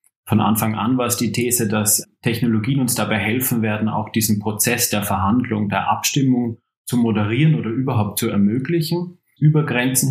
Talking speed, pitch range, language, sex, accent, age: 165 wpm, 105-125 Hz, German, male, German, 30-49